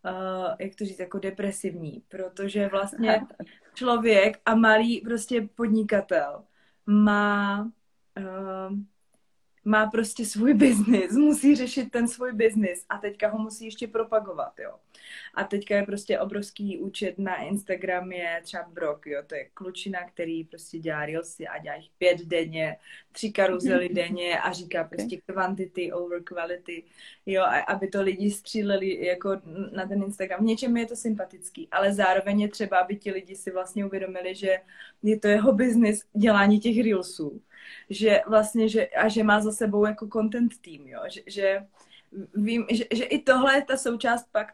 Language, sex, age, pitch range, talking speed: Slovak, female, 20-39, 185-220 Hz, 160 wpm